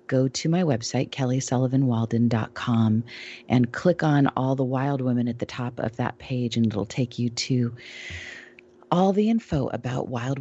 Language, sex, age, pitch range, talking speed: English, female, 40-59, 125-170 Hz, 160 wpm